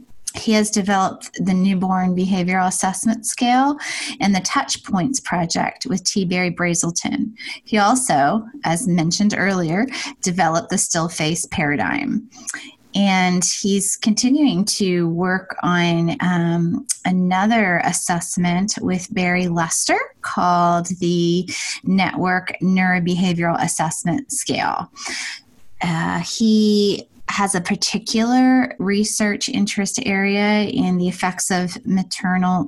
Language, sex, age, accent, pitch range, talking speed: English, female, 20-39, American, 175-220 Hz, 105 wpm